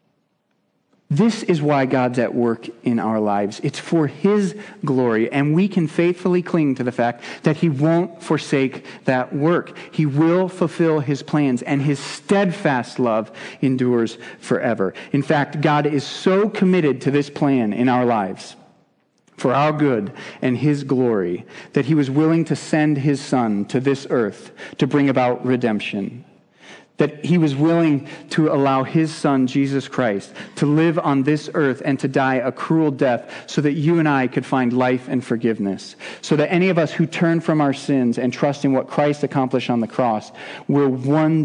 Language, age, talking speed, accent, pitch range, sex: English, 40-59, 180 wpm, American, 125-155 Hz, male